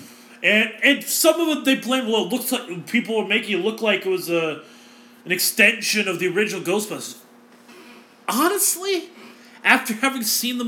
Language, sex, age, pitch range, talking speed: English, male, 30-49, 140-220 Hz, 175 wpm